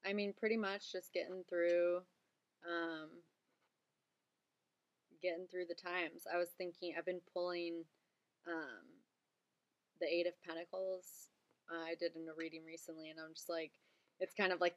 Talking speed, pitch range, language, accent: 155 wpm, 160-180 Hz, English, American